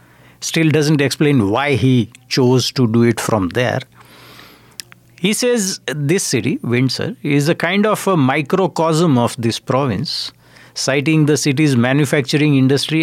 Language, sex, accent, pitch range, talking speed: English, male, Indian, 115-150 Hz, 140 wpm